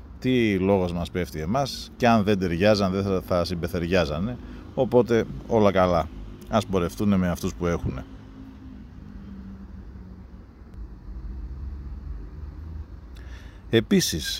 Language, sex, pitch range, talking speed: Greek, male, 85-115 Hz, 95 wpm